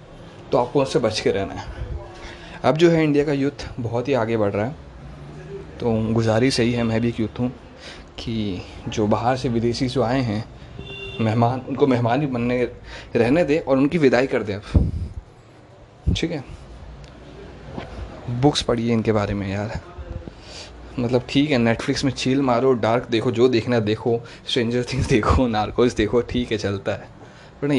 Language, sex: Hindi, male